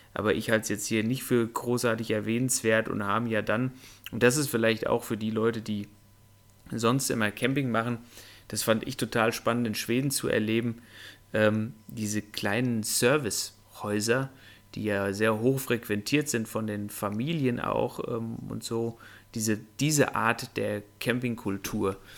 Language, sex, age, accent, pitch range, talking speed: German, male, 30-49, German, 100-120 Hz, 155 wpm